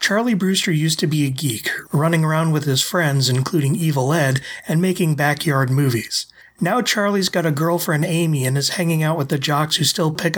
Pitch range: 145-175 Hz